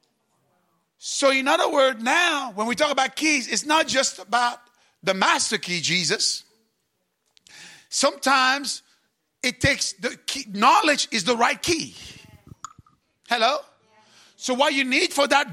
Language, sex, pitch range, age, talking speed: English, male, 215-290 Hz, 50-69, 130 wpm